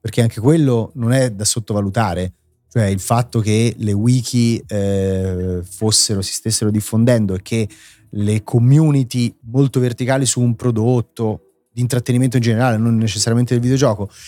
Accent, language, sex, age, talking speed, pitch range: native, Italian, male, 30-49, 145 wpm, 105-140 Hz